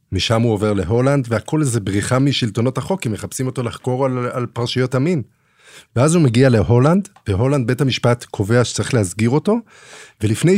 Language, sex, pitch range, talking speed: Hebrew, male, 100-130 Hz, 165 wpm